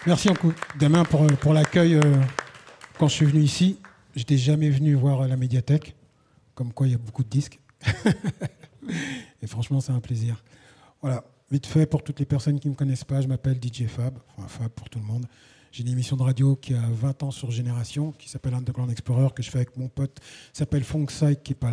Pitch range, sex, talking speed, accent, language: 120-145 Hz, male, 225 wpm, French, French